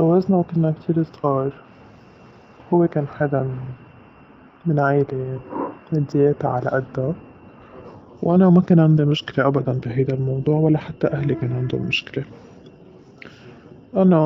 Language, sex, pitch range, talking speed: Arabic, male, 130-155 Hz, 120 wpm